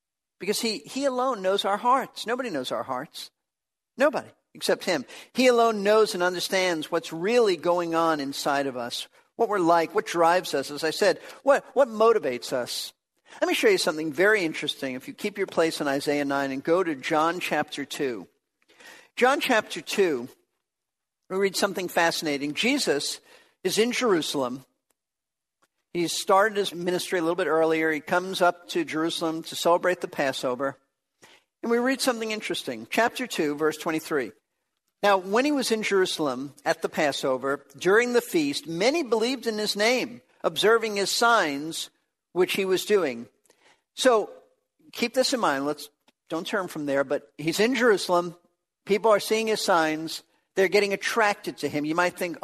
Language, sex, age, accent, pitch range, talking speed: English, male, 50-69, American, 160-225 Hz, 170 wpm